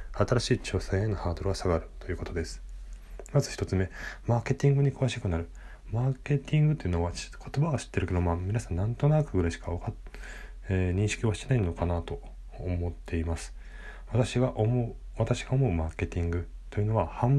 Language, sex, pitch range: Japanese, male, 85-115 Hz